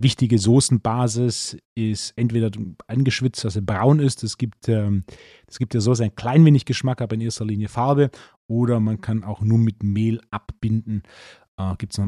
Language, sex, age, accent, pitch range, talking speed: German, male, 30-49, German, 105-130 Hz, 170 wpm